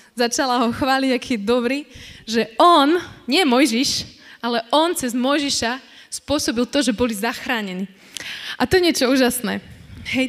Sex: female